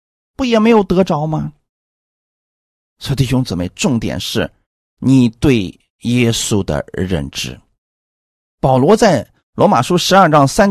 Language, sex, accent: Chinese, male, native